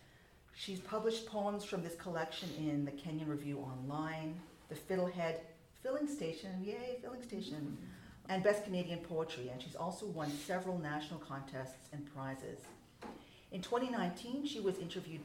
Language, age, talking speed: English, 40-59, 140 wpm